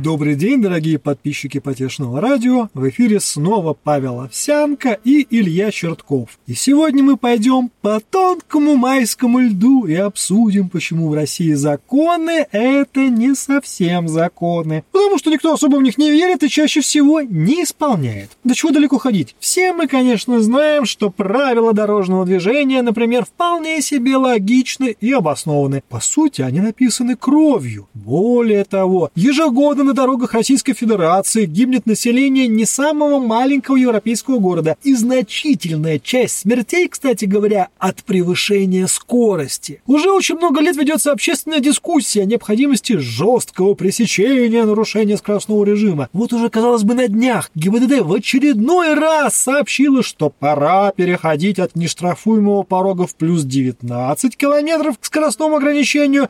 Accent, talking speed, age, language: native, 140 wpm, 30-49, Russian